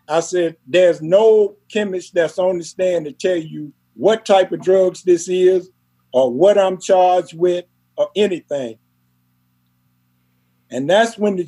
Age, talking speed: 50-69, 150 wpm